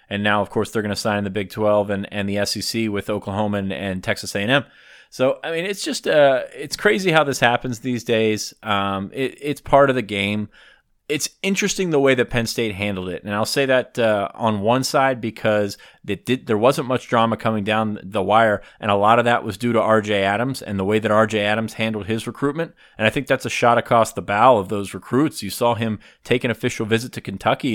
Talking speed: 235 wpm